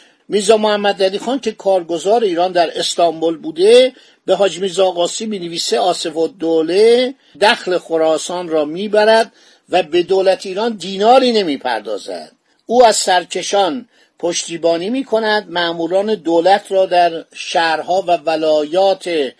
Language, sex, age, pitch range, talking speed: Persian, male, 50-69, 165-225 Hz, 120 wpm